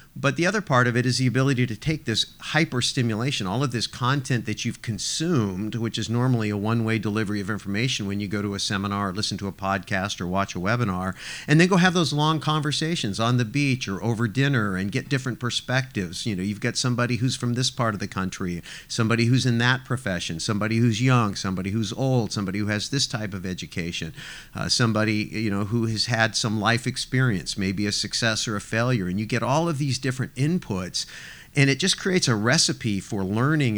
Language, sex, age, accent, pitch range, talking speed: English, male, 50-69, American, 105-135 Hz, 220 wpm